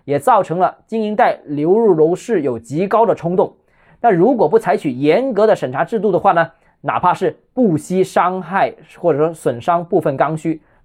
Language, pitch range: Chinese, 145-190 Hz